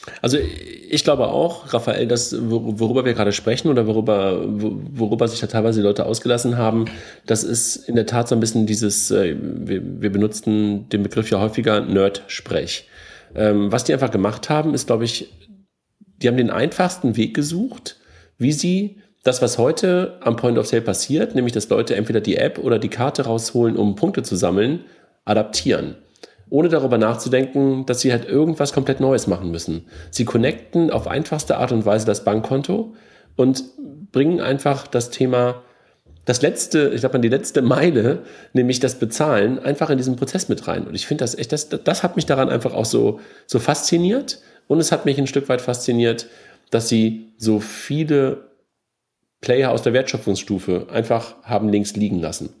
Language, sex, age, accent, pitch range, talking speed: German, male, 40-59, German, 110-140 Hz, 175 wpm